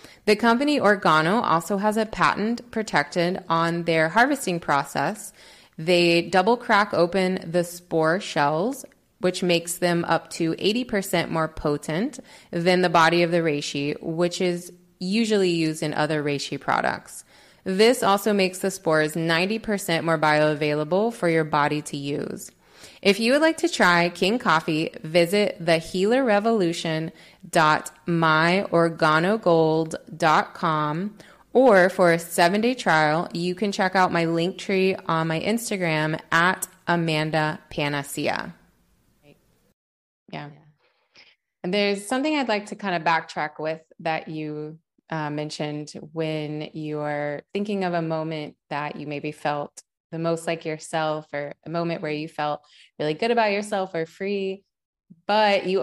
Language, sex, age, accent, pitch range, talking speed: English, female, 20-39, American, 155-190 Hz, 140 wpm